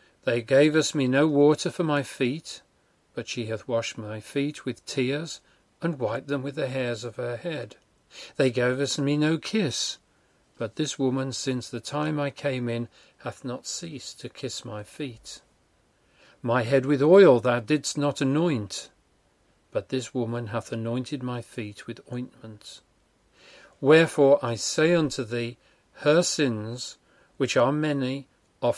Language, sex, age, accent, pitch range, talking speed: English, male, 40-59, British, 115-145 Hz, 155 wpm